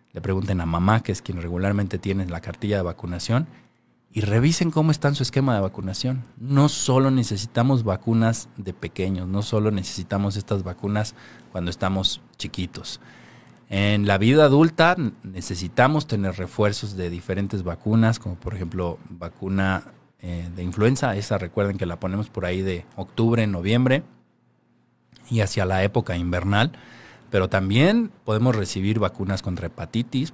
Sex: male